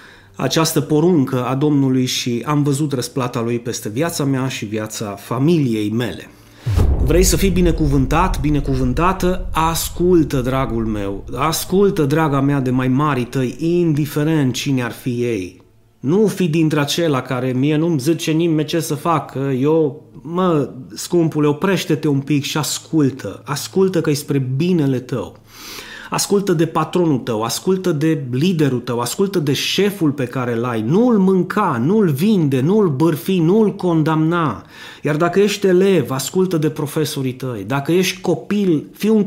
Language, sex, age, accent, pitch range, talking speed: Romanian, male, 30-49, native, 125-170 Hz, 145 wpm